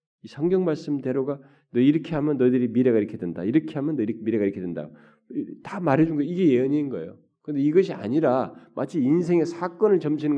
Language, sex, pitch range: Korean, male, 115-175 Hz